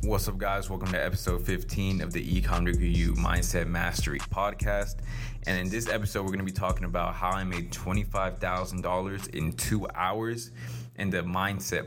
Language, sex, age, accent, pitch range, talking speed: English, male, 20-39, American, 90-115 Hz, 170 wpm